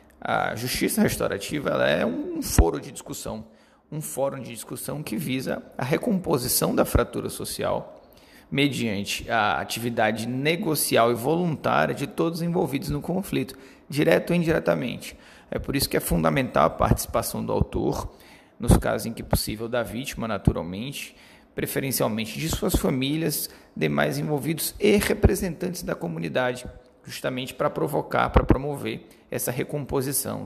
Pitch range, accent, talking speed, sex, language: 115-155 Hz, Brazilian, 135 wpm, male, Portuguese